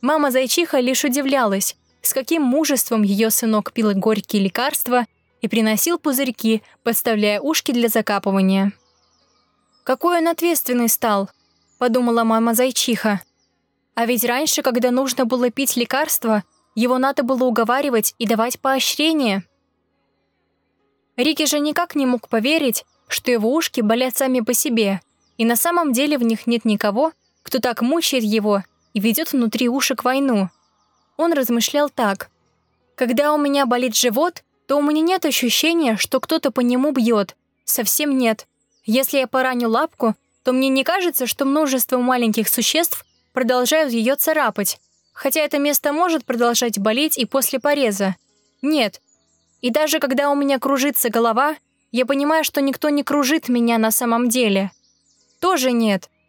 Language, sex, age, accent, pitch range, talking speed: Russian, female, 20-39, native, 225-285 Hz, 145 wpm